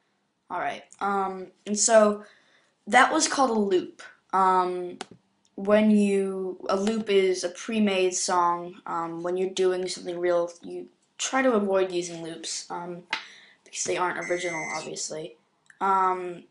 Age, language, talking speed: 10-29, English, 140 wpm